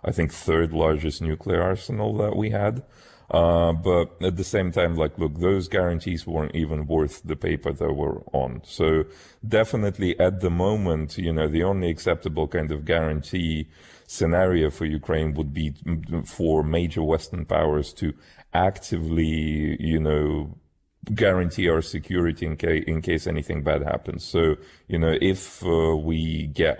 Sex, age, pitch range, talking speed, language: male, 40-59, 75-90 Hz, 155 wpm, Danish